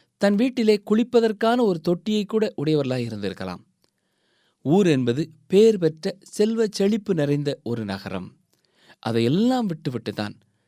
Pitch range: 115-175 Hz